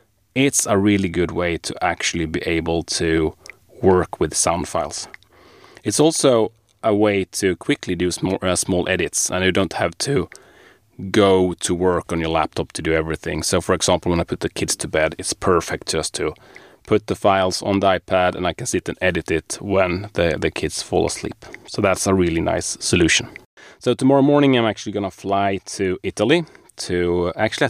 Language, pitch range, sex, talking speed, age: English, 90-110 Hz, male, 195 wpm, 30-49